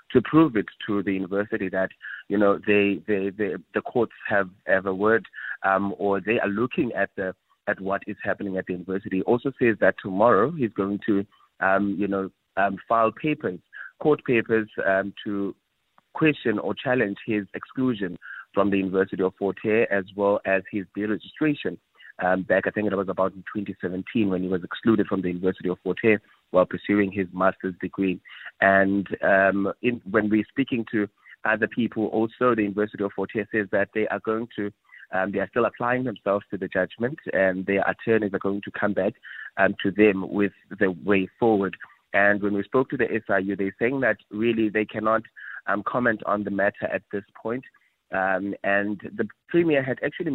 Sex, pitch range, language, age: male, 95-110 Hz, English, 30-49